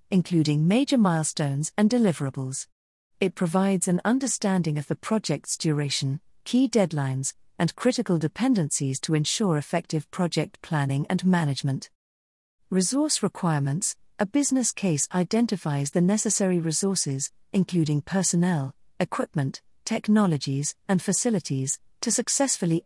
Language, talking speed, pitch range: English, 110 wpm, 150-210 Hz